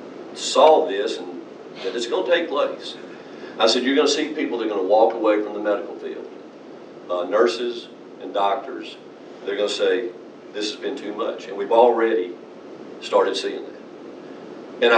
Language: English